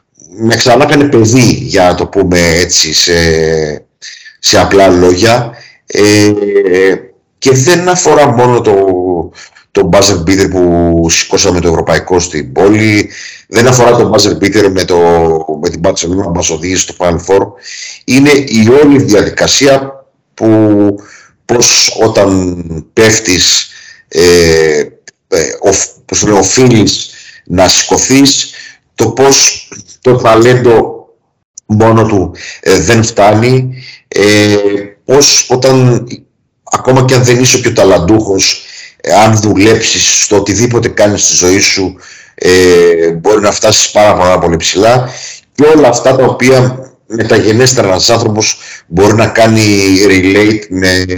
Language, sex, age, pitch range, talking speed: Greek, male, 50-69, 90-125 Hz, 115 wpm